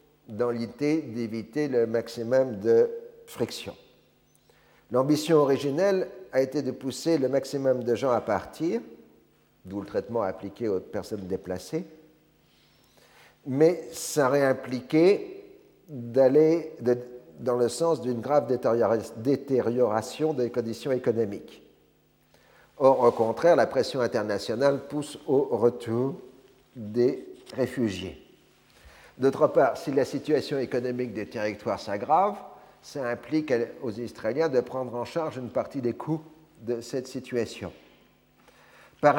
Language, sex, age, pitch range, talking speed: French, male, 50-69, 115-150 Hz, 115 wpm